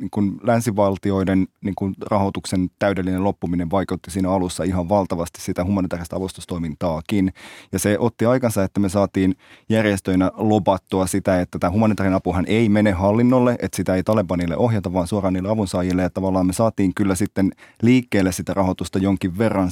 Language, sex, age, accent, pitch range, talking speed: Finnish, male, 20-39, native, 90-105 Hz, 160 wpm